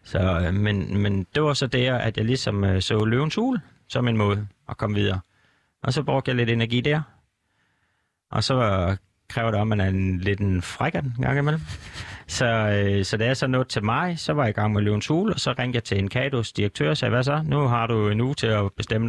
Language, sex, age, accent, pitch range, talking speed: Danish, male, 30-49, native, 105-130 Hz, 255 wpm